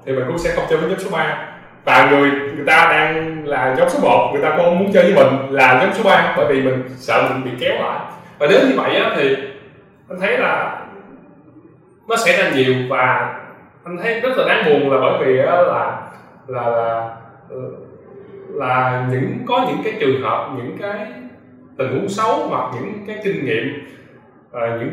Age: 20-39